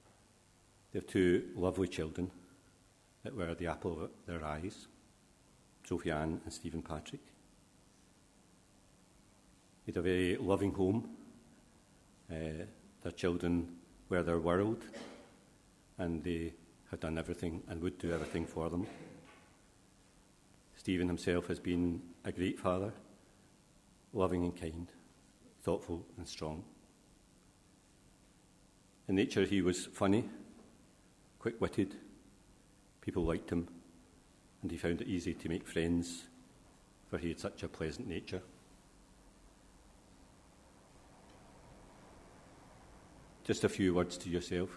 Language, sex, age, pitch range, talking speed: English, male, 50-69, 85-95 Hz, 110 wpm